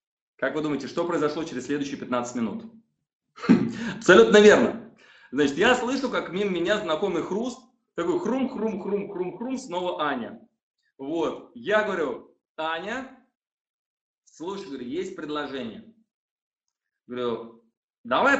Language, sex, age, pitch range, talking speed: Russian, male, 30-49, 160-250 Hz, 105 wpm